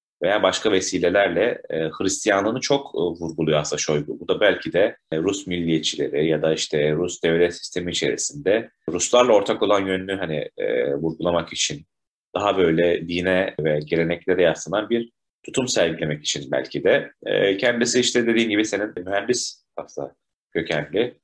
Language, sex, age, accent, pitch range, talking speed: Turkish, male, 30-49, native, 85-110 Hz, 150 wpm